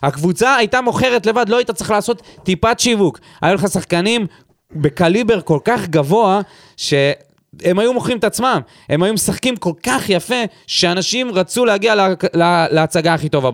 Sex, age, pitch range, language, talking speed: male, 30-49, 145-210 Hz, Hebrew, 165 wpm